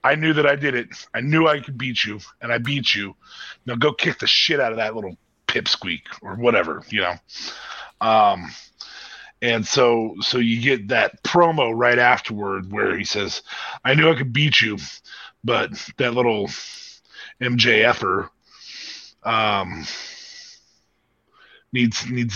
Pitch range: 115-135 Hz